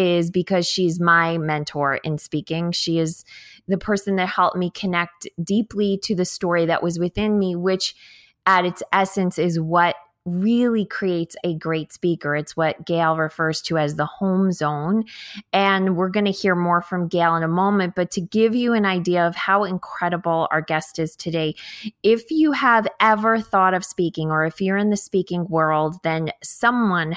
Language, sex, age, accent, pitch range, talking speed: English, female, 20-39, American, 165-195 Hz, 185 wpm